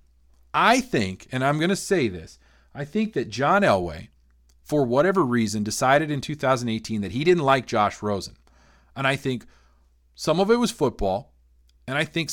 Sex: male